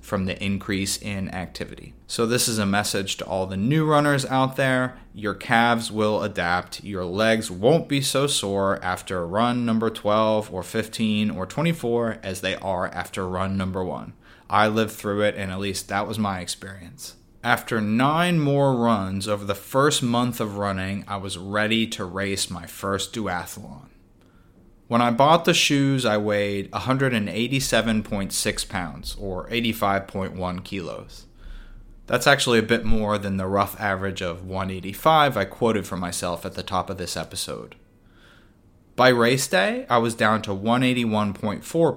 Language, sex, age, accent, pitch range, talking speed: English, male, 20-39, American, 95-120 Hz, 160 wpm